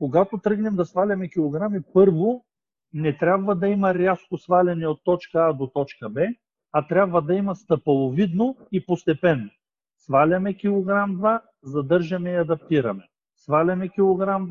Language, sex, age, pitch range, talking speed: Bulgarian, male, 50-69, 150-195 Hz, 135 wpm